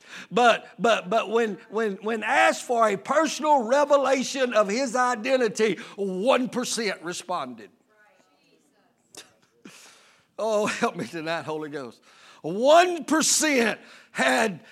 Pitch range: 205-280 Hz